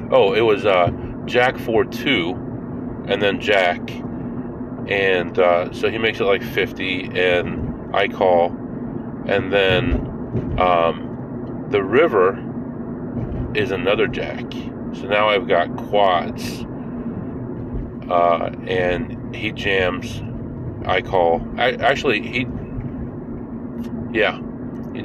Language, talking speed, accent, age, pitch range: English, 105 wpm, American, 40-59, 100-125 Hz